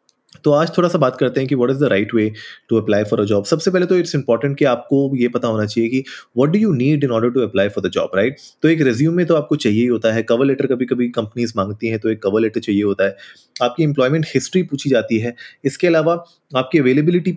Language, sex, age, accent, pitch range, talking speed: Hindi, male, 30-49, native, 120-160 Hz, 265 wpm